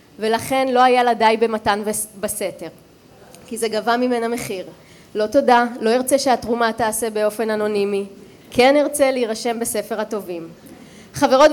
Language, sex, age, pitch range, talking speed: Hebrew, female, 20-39, 210-255 Hz, 140 wpm